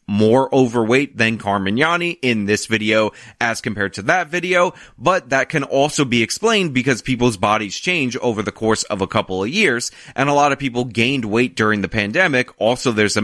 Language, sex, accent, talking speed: English, male, American, 195 wpm